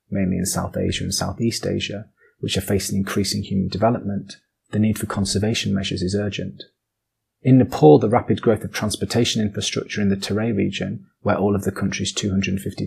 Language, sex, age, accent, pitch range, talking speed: English, male, 30-49, British, 100-115 Hz, 175 wpm